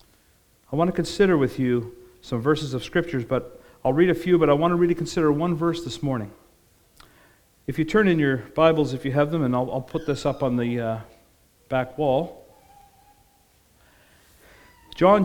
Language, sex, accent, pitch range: English, male, American, 120-155 Hz